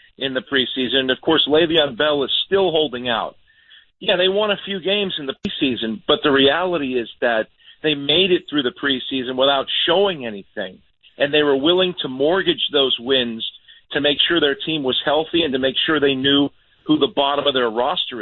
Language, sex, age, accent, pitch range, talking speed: English, male, 50-69, American, 130-175 Hz, 200 wpm